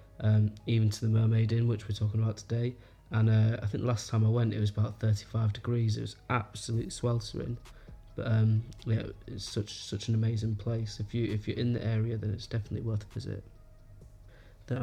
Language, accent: English, British